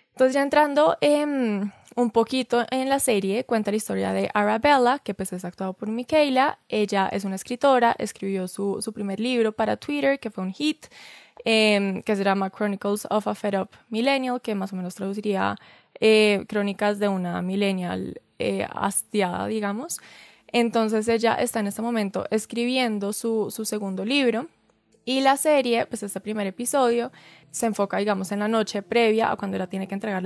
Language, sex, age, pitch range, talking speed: Spanish, female, 20-39, 195-240 Hz, 175 wpm